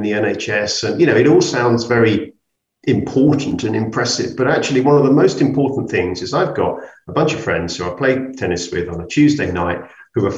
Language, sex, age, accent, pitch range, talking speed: English, male, 50-69, British, 105-145 Hz, 220 wpm